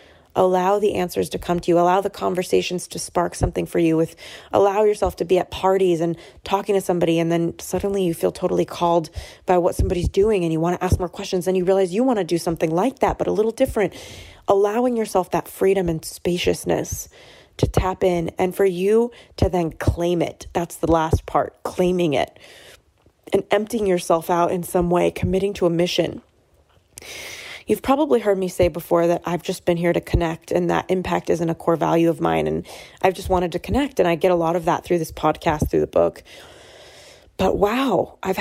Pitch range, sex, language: 170-195 Hz, female, English